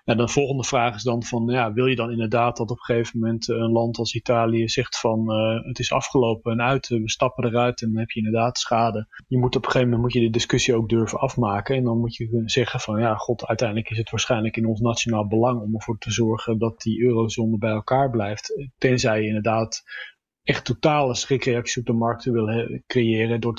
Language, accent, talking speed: English, Dutch, 230 wpm